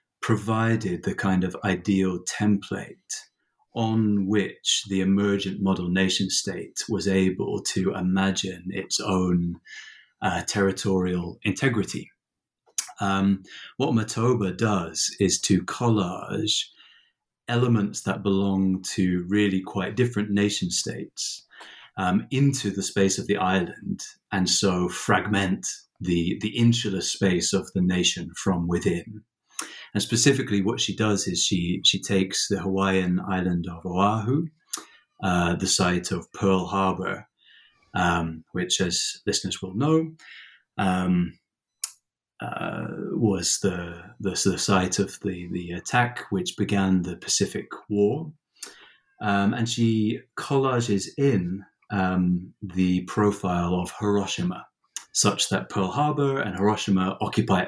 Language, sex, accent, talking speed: English, male, British, 115 wpm